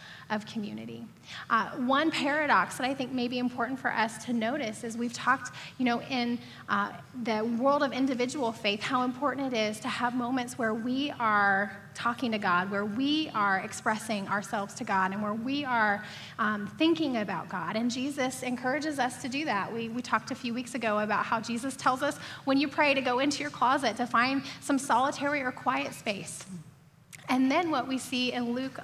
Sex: female